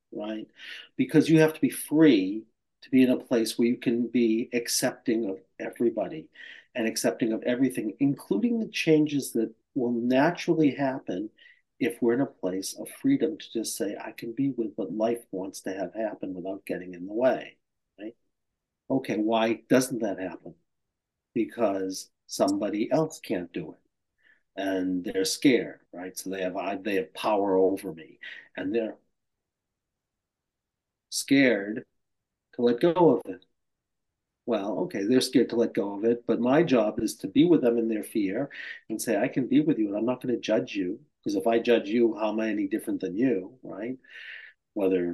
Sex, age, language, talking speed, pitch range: male, 50-69, English, 180 wpm, 110-160 Hz